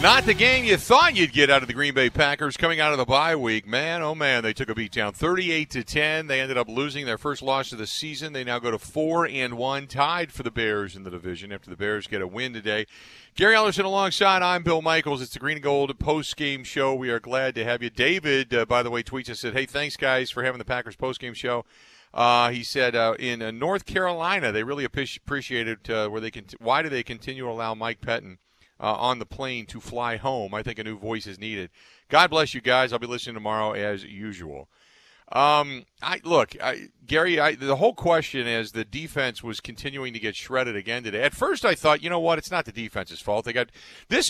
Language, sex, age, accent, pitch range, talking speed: English, male, 40-59, American, 115-155 Hz, 245 wpm